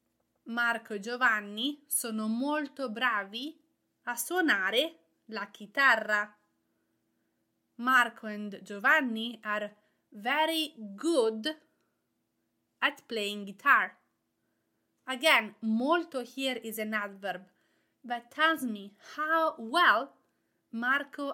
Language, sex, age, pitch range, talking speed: English, female, 30-49, 210-270 Hz, 85 wpm